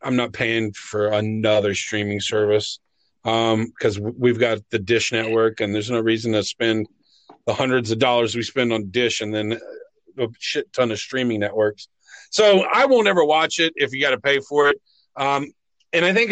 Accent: American